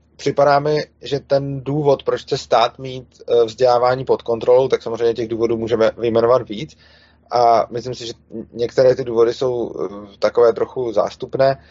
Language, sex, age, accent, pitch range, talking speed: Czech, male, 30-49, native, 115-160 Hz, 155 wpm